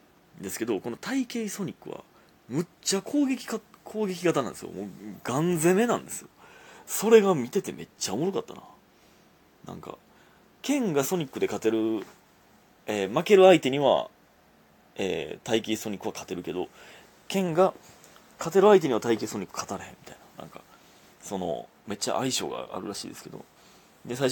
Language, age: Japanese, 30-49